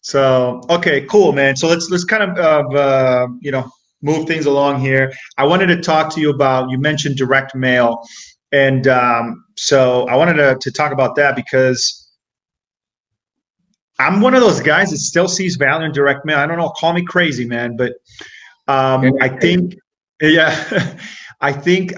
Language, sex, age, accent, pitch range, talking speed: English, male, 30-49, American, 135-165 Hz, 175 wpm